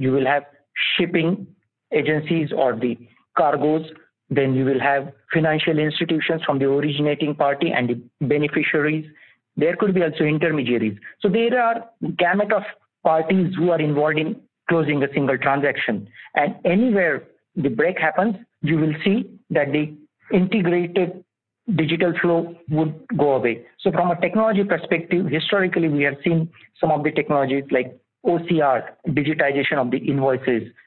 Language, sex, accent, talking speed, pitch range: English, male, Indian, 150 wpm, 140-175 Hz